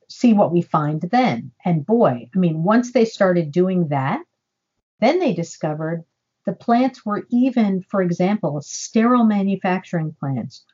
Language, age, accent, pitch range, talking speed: English, 50-69, American, 155-190 Hz, 145 wpm